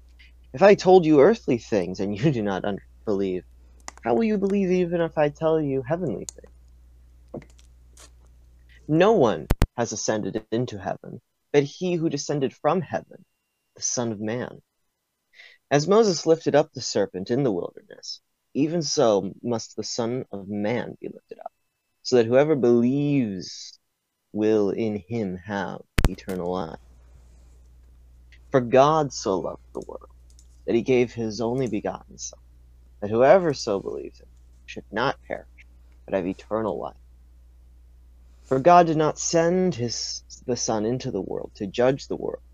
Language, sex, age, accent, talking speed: English, male, 30-49, American, 150 wpm